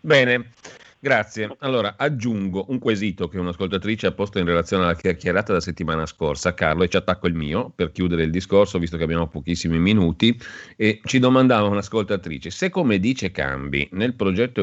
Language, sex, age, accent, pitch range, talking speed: Italian, male, 40-59, native, 85-105 Hz, 170 wpm